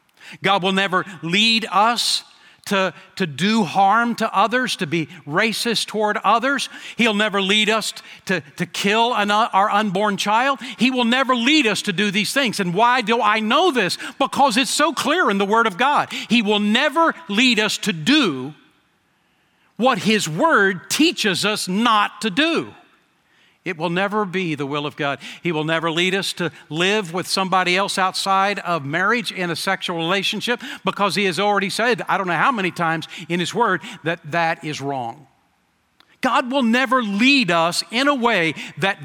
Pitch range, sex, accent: 175-235 Hz, male, American